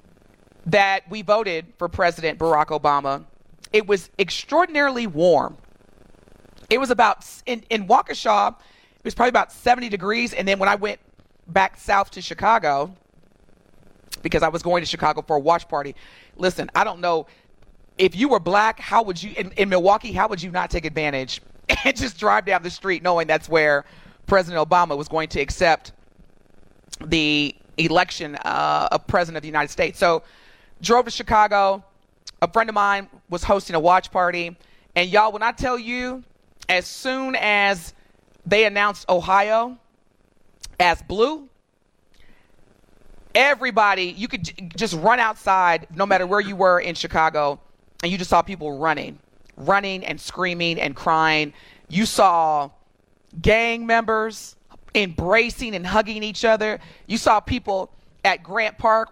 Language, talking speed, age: English, 155 wpm, 30-49